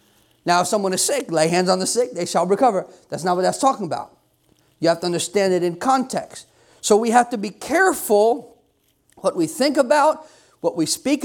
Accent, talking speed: American, 210 wpm